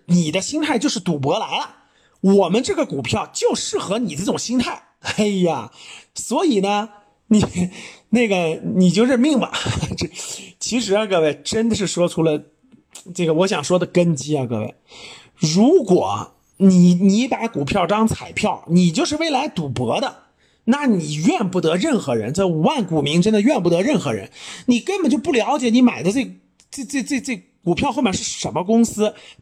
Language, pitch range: Chinese, 175-255 Hz